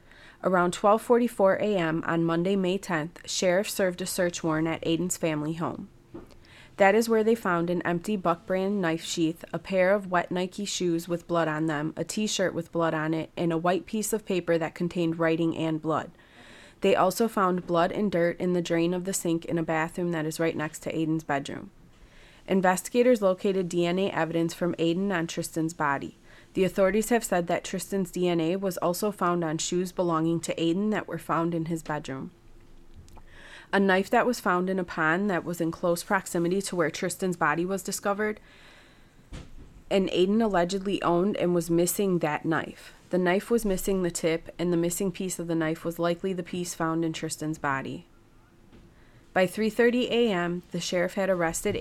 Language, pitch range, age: English, 165-190 Hz, 30-49